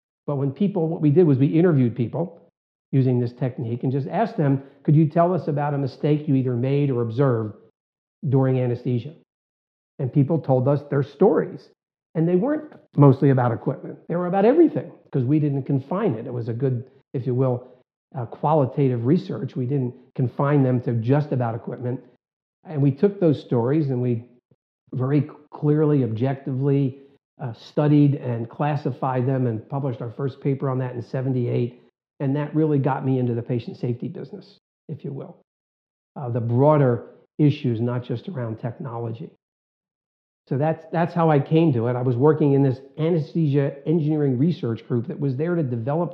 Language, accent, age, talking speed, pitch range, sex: English, American, 50-69, 180 wpm, 125-150 Hz, male